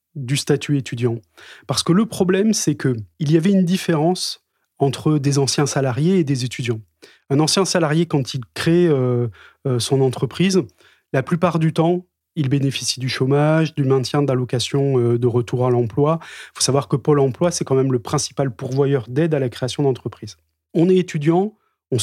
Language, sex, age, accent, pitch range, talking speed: French, male, 30-49, French, 130-170 Hz, 180 wpm